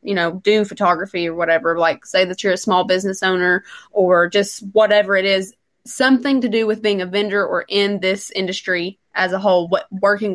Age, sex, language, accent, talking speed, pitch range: 20-39, female, English, American, 205 wpm, 185-205 Hz